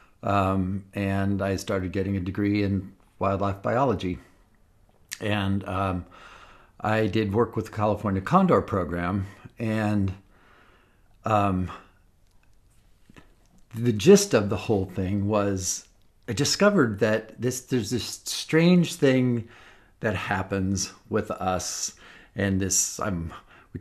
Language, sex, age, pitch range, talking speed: English, male, 50-69, 95-115 Hz, 115 wpm